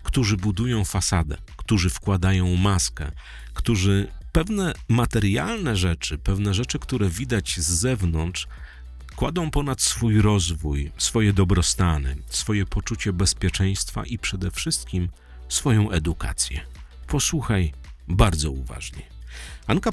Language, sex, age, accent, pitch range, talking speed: Polish, male, 40-59, native, 80-110 Hz, 100 wpm